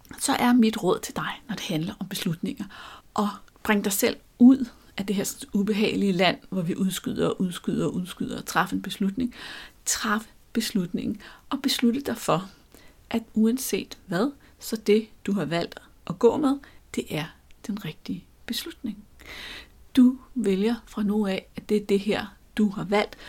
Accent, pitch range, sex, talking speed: native, 195-235 Hz, female, 175 wpm